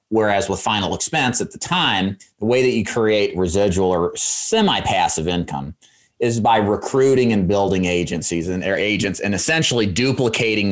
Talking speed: 155 wpm